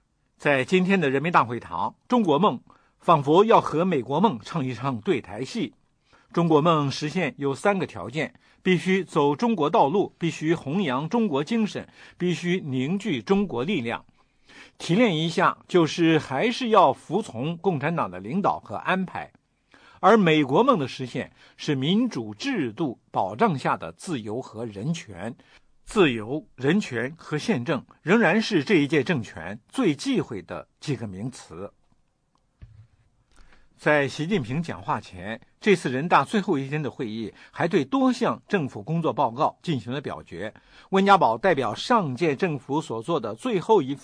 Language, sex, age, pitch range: English, male, 60-79, 130-195 Hz